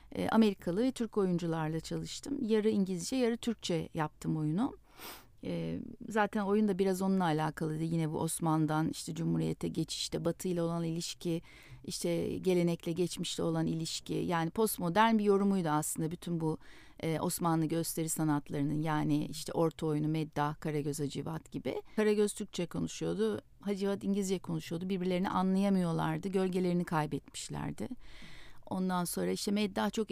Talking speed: 130 wpm